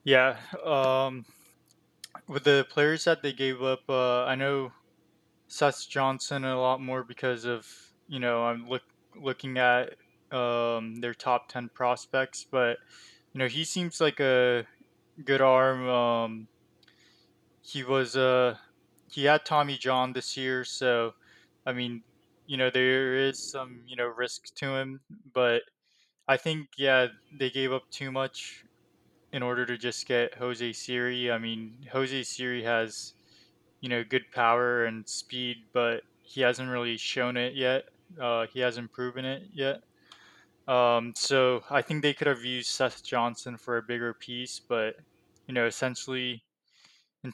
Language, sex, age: English, male, 20-39